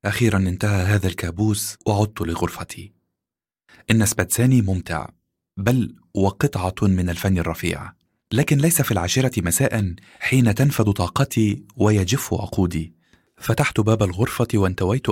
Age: 30-49